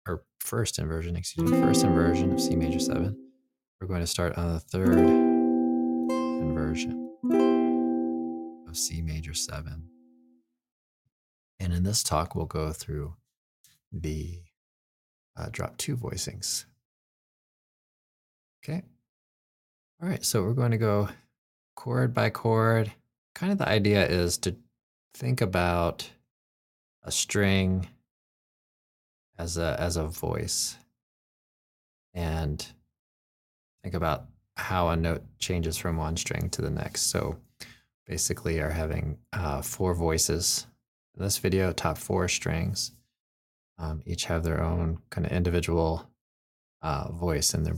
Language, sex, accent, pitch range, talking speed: English, male, American, 80-95 Hz, 125 wpm